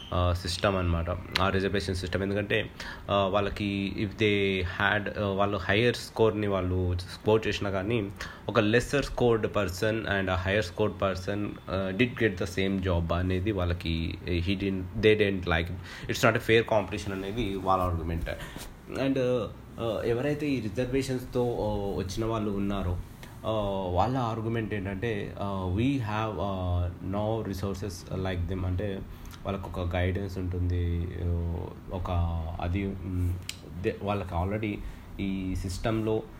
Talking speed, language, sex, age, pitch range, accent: 115 wpm, Telugu, male, 20-39, 90-110 Hz, native